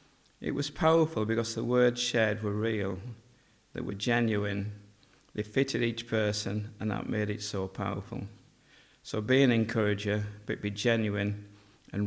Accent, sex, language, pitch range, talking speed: British, male, English, 105-125 Hz, 150 wpm